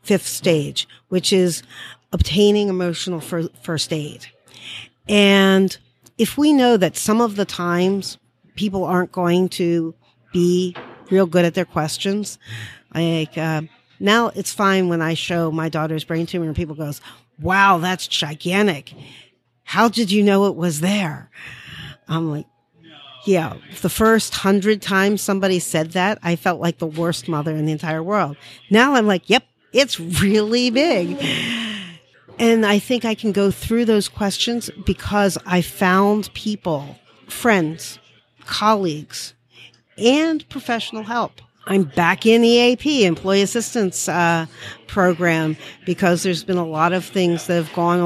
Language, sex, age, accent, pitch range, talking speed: English, female, 50-69, American, 165-210 Hz, 145 wpm